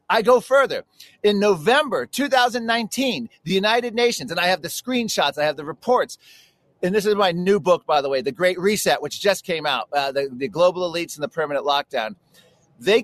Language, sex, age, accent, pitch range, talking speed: English, male, 40-59, American, 175-235 Hz, 205 wpm